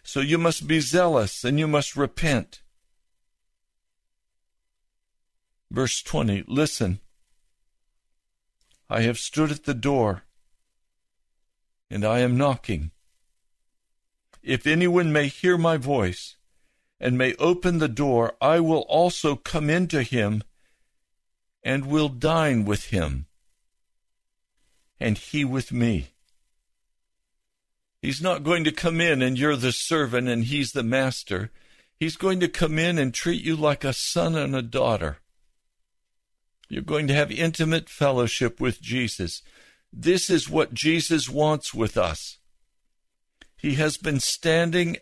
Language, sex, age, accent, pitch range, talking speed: English, male, 60-79, American, 110-155 Hz, 125 wpm